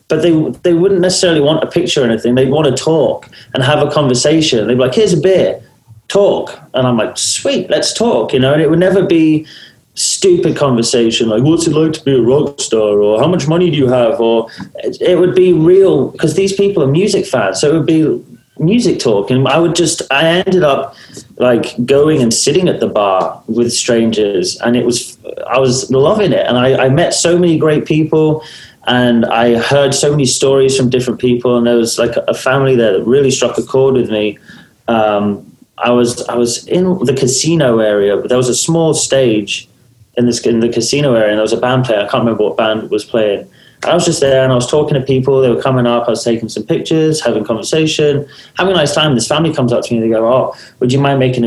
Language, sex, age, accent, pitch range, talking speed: English, male, 30-49, British, 120-155 Hz, 235 wpm